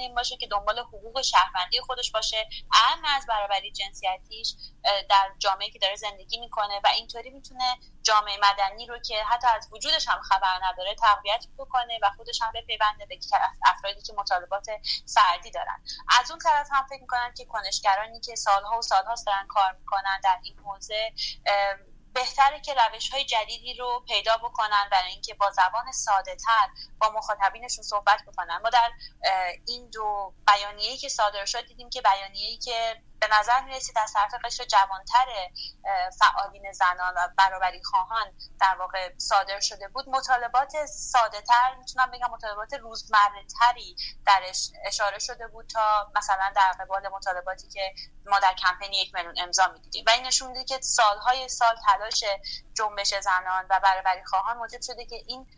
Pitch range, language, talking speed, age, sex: 195-240 Hz, Persian, 160 wpm, 30-49, female